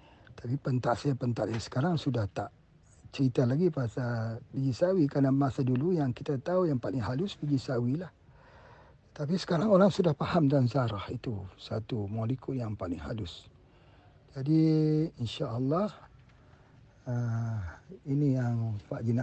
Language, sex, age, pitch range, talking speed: Malay, male, 50-69, 120-150 Hz, 130 wpm